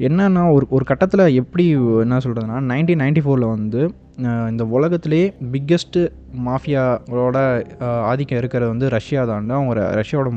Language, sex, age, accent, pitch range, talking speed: Tamil, male, 20-39, native, 120-145 Hz, 120 wpm